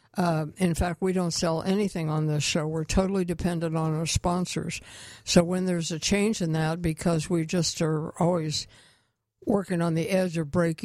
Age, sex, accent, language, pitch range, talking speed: 60-79, female, American, English, 155-180 Hz, 190 wpm